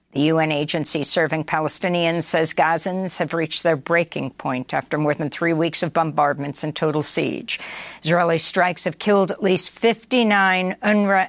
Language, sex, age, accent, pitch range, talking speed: English, female, 50-69, American, 160-195 Hz, 160 wpm